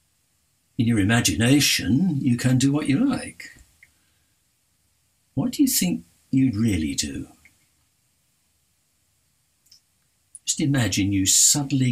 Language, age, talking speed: English, 60-79, 100 wpm